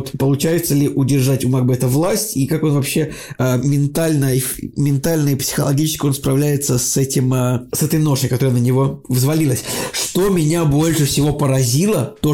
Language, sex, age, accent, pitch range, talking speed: Russian, male, 20-39, native, 130-155 Hz, 165 wpm